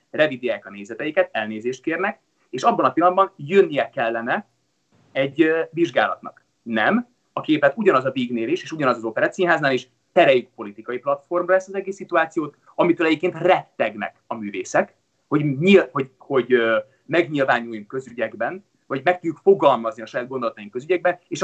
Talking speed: 145 wpm